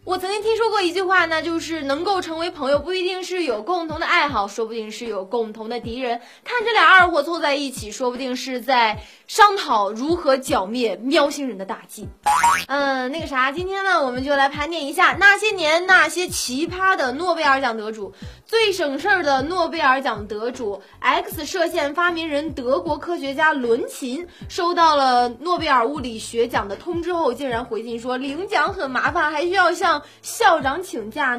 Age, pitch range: 20-39, 240-350 Hz